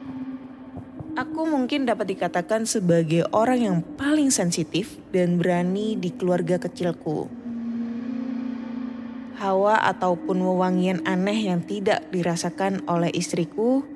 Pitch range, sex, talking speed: 175-255 Hz, female, 100 wpm